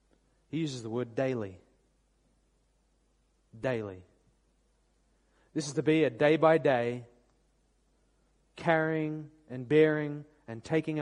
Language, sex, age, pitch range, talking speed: English, male, 30-49, 120-170 Hz, 105 wpm